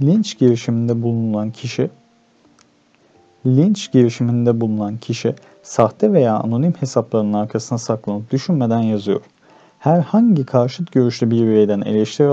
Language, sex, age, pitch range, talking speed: Turkish, male, 40-59, 105-130 Hz, 105 wpm